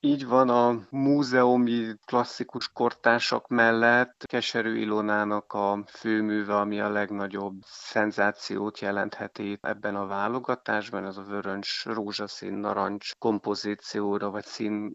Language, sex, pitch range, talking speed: Hungarian, male, 100-110 Hz, 110 wpm